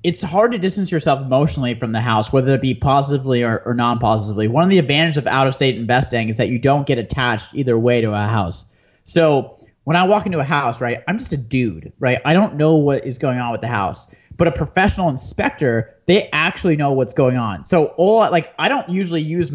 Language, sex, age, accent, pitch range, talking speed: English, male, 30-49, American, 125-165 Hz, 225 wpm